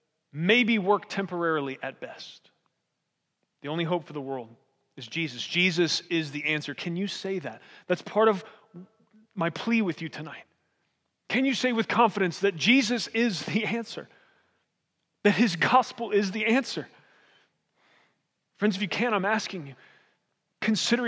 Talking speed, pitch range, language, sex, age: 150 wpm, 160-210 Hz, English, male, 30-49